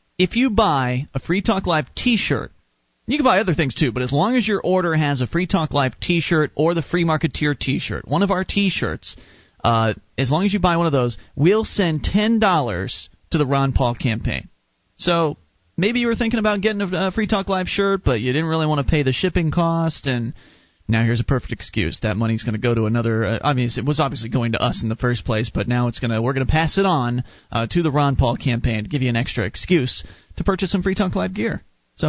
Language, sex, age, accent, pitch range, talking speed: English, male, 30-49, American, 120-175 Hz, 245 wpm